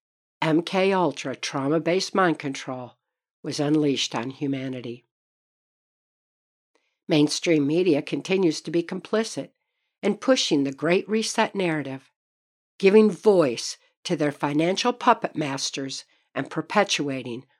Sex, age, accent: female, 60-79, American